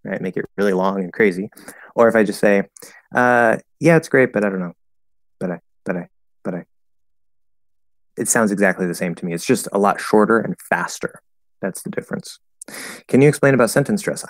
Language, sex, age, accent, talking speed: English, male, 30-49, American, 205 wpm